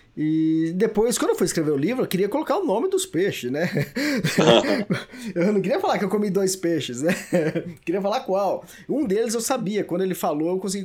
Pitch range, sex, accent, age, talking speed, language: 155-215 Hz, male, Brazilian, 20-39, 215 wpm, Portuguese